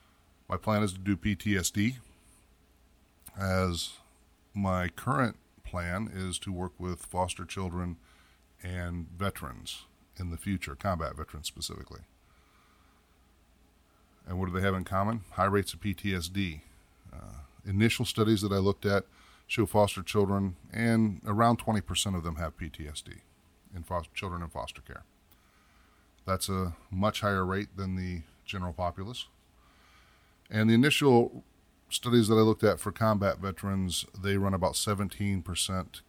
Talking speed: 135 wpm